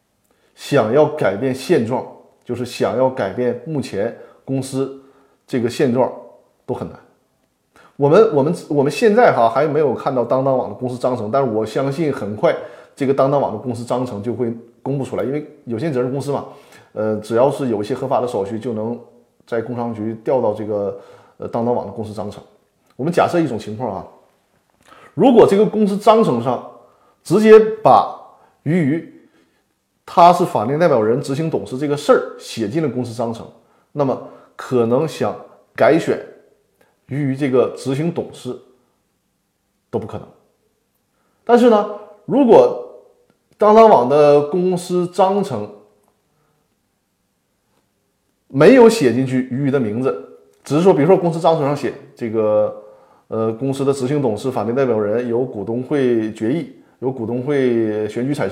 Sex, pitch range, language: male, 115-170 Hz, Chinese